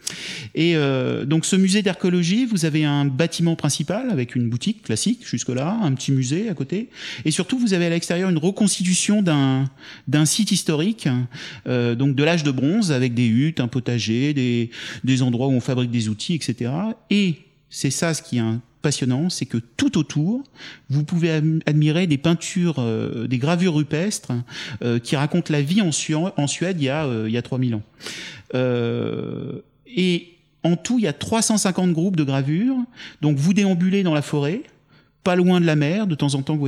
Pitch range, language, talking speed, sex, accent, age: 130-175 Hz, French, 195 wpm, male, French, 30-49